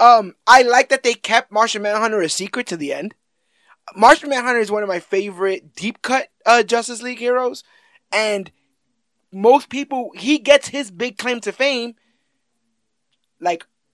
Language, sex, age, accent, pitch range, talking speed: English, male, 20-39, American, 165-255 Hz, 160 wpm